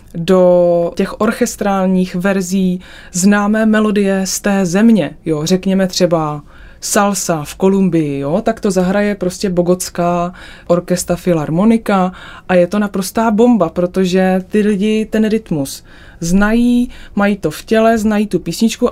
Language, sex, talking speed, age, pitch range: Czech, female, 130 wpm, 20-39, 180-210 Hz